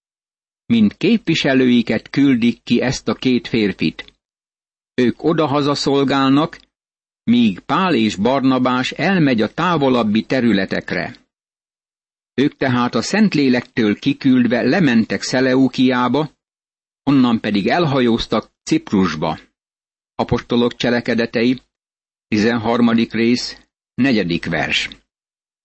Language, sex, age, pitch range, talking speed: Hungarian, male, 60-79, 115-145 Hz, 85 wpm